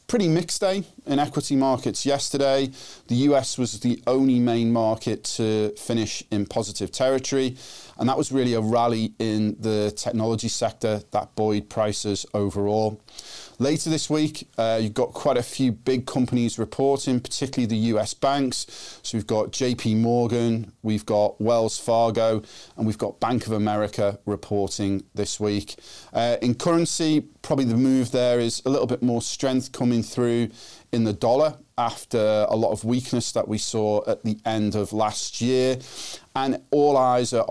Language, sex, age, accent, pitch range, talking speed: English, male, 40-59, British, 110-135 Hz, 165 wpm